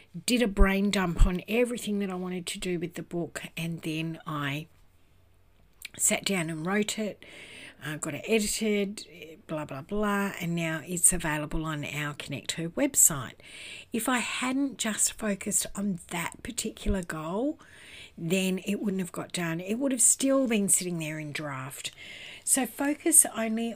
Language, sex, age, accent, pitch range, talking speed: English, female, 60-79, Australian, 160-210 Hz, 165 wpm